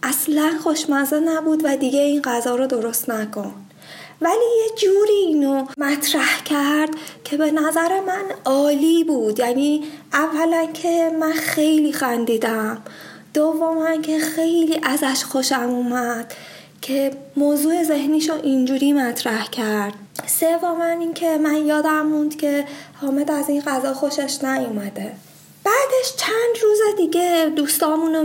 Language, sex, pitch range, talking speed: Persian, female, 265-330 Hz, 130 wpm